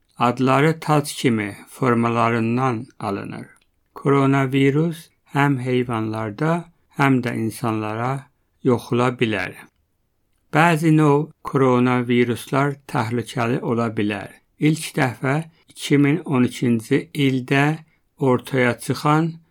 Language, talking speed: English, 75 wpm